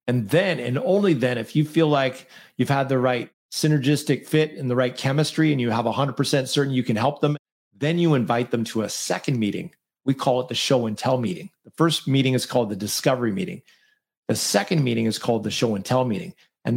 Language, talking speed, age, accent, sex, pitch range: English, 210 wpm, 40-59, American, male, 120-150 Hz